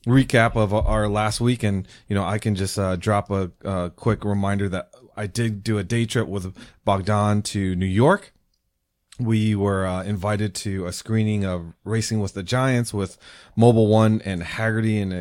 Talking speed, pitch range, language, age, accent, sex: 185 wpm, 95-110 Hz, English, 30-49, American, male